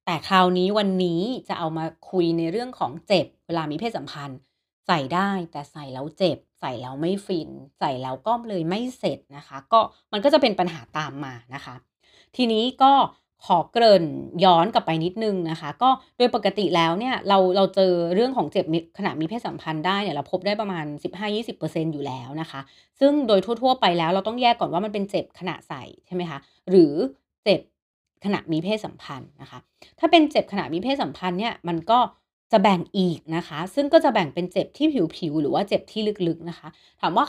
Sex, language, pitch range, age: female, Thai, 165-225 Hz, 30-49